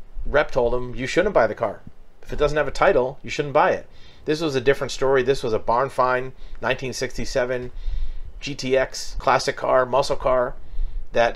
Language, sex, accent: English, male, American